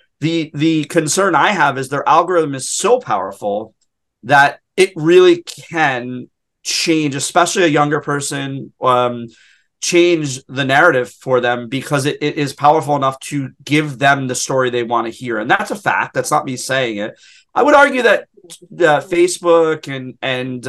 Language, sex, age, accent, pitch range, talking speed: English, male, 30-49, American, 135-165 Hz, 170 wpm